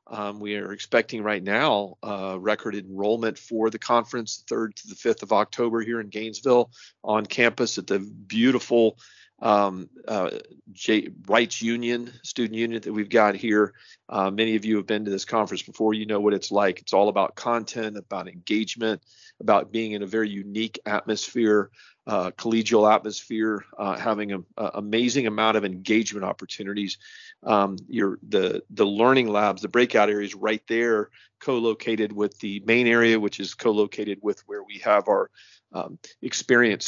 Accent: American